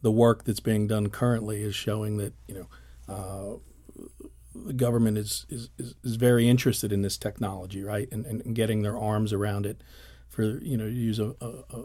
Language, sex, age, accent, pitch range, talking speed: English, male, 50-69, American, 100-115 Hz, 185 wpm